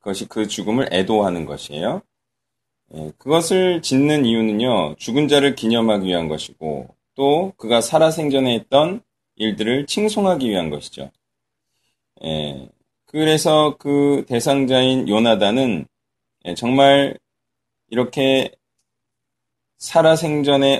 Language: Korean